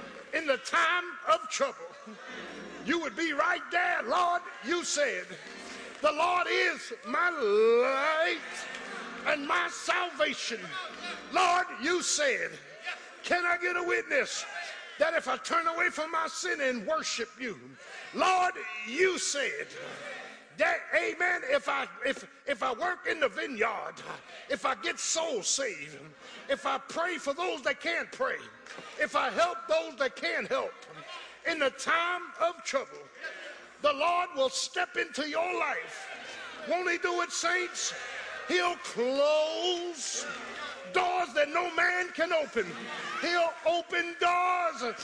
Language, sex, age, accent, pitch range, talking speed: English, male, 50-69, American, 310-360 Hz, 135 wpm